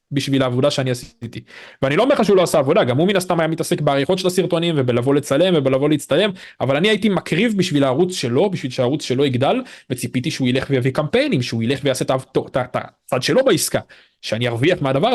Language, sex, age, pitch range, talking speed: Hebrew, male, 20-39, 130-175 Hz, 200 wpm